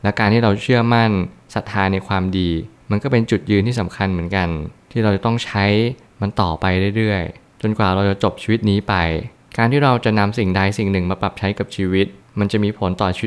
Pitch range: 95-115 Hz